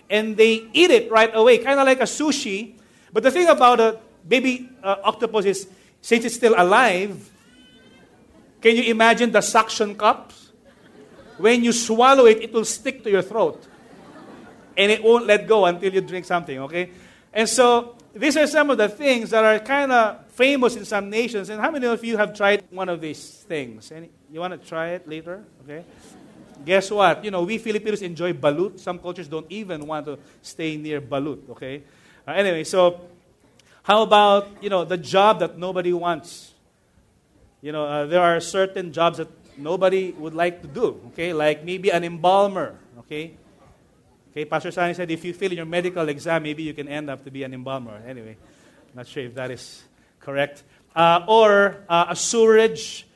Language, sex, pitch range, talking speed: English, male, 165-225 Hz, 185 wpm